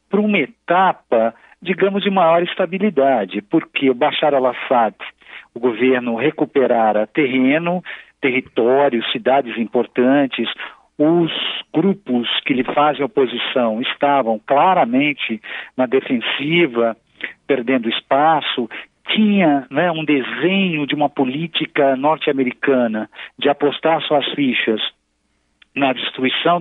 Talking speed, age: 100 wpm, 50-69